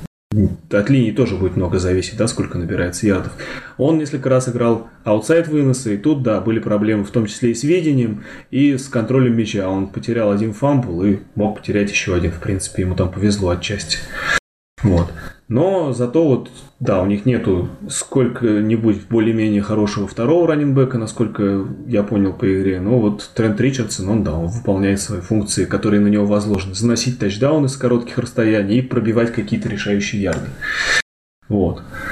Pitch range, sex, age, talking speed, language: 100-125 Hz, male, 20-39, 165 wpm, Russian